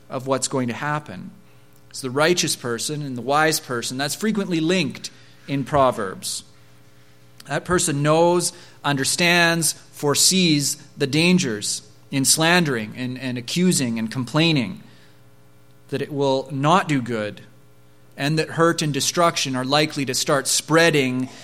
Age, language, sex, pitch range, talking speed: 30-49, English, male, 125-165 Hz, 135 wpm